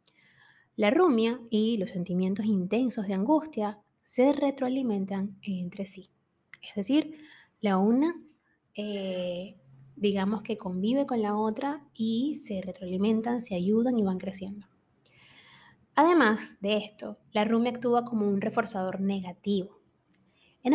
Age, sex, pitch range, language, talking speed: 20-39, female, 200-255 Hz, Spanish, 120 wpm